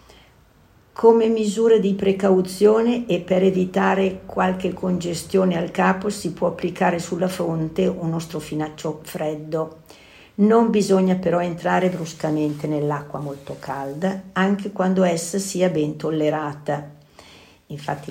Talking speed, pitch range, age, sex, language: 115 wpm, 155-190 Hz, 50-69, female, Italian